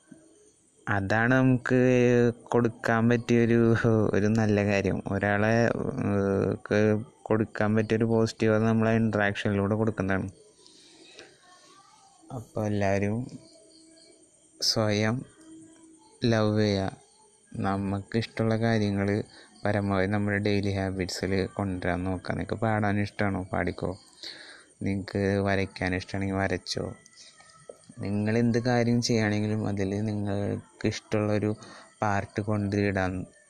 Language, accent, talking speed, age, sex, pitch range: Malayalam, native, 80 wpm, 20-39, male, 100-125 Hz